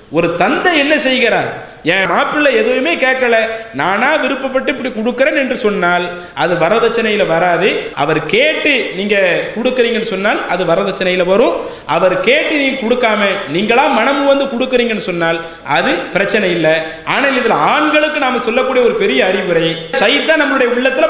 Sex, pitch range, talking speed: male, 210-270 Hz, 130 wpm